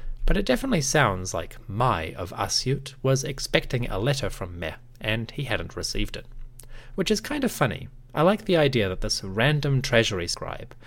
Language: English